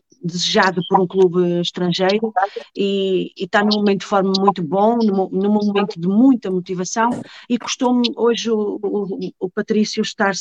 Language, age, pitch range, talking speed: English, 40-59, 185-220 Hz, 155 wpm